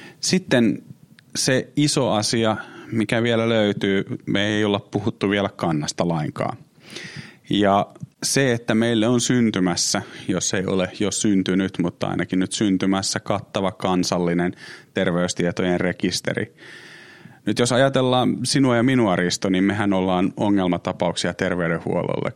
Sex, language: male, Finnish